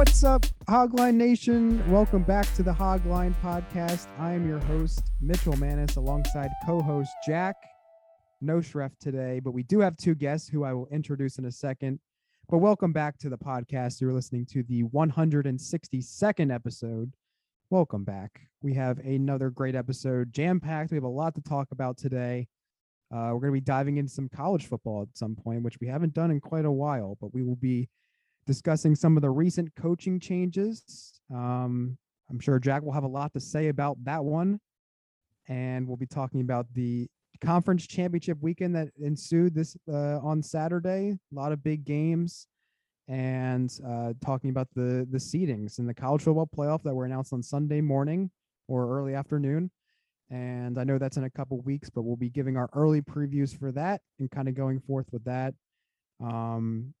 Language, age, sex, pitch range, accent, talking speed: English, 30-49, male, 130-165 Hz, American, 185 wpm